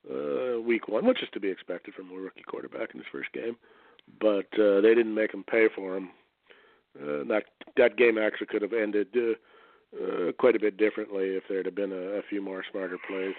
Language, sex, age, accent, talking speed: English, male, 40-59, American, 215 wpm